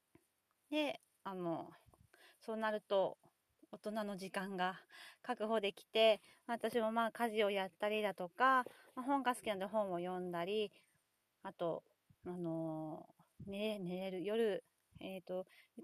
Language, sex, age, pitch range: Japanese, female, 30-49, 195-250 Hz